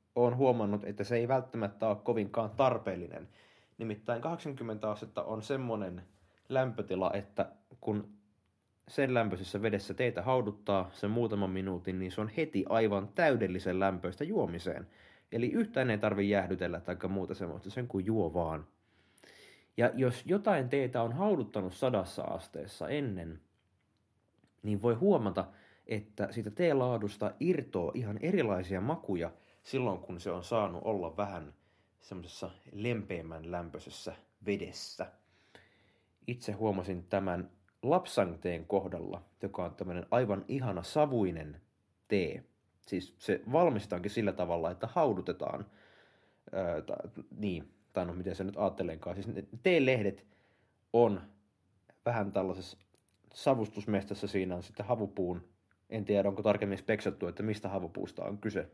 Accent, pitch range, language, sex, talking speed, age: native, 95-115 Hz, Finnish, male, 125 wpm, 30-49